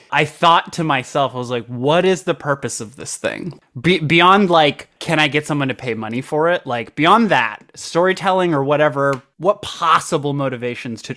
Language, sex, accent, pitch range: English, male, American, 125-160 Hz